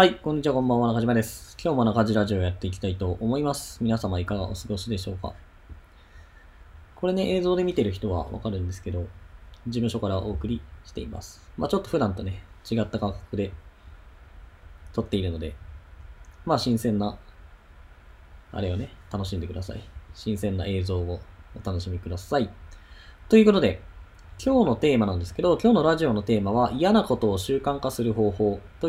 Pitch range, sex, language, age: 85-130 Hz, male, Japanese, 20-39